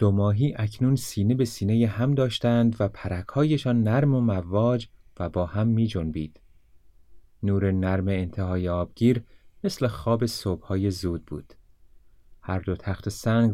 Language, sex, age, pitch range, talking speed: Persian, male, 30-49, 90-120 Hz, 140 wpm